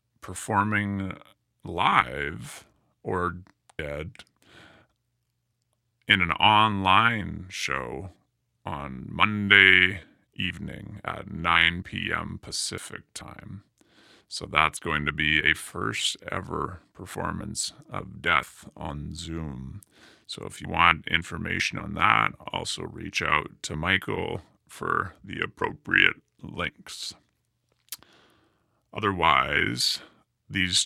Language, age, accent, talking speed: English, 30-49, American, 90 wpm